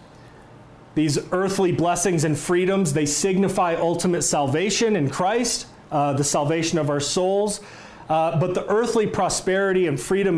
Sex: male